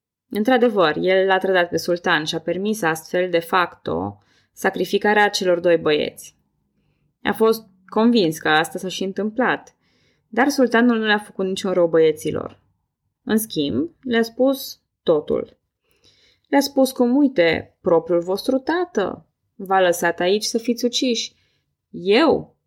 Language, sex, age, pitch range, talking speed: Romanian, female, 20-39, 170-230 Hz, 135 wpm